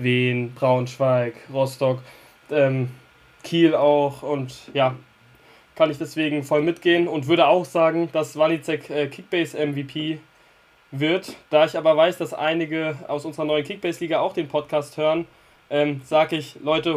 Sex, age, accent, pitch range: male, 20-39, German, 140-165 Hz